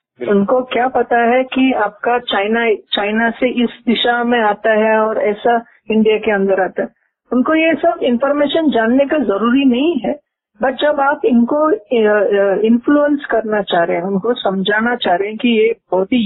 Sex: female